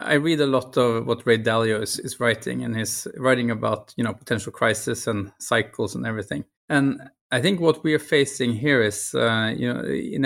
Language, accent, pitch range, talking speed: English, Norwegian, 115-130 Hz, 210 wpm